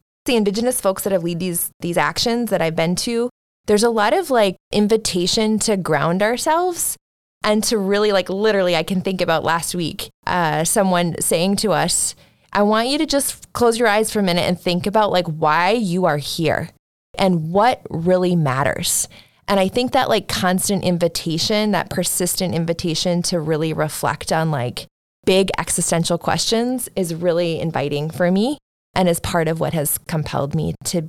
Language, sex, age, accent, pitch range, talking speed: English, female, 20-39, American, 165-210 Hz, 180 wpm